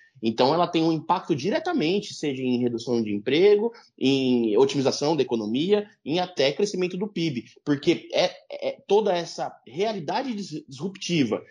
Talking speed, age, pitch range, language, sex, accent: 130 wpm, 20-39, 130-180 Hz, Portuguese, male, Brazilian